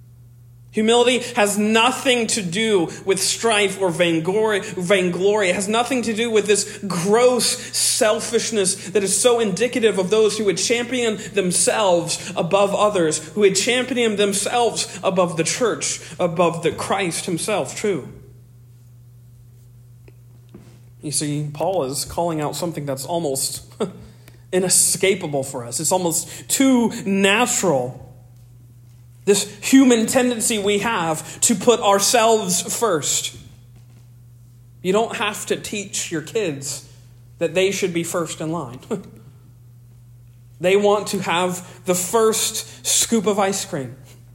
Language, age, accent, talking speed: English, 40-59, American, 125 wpm